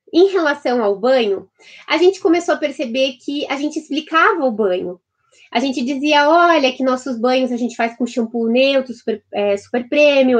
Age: 20-39